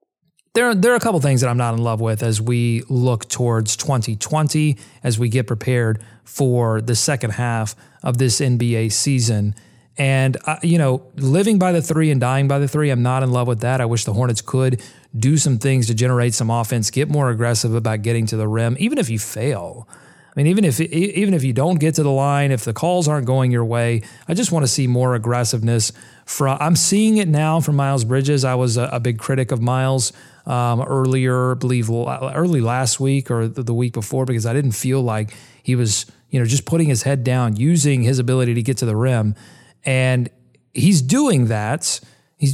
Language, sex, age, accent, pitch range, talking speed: English, male, 30-49, American, 120-145 Hz, 215 wpm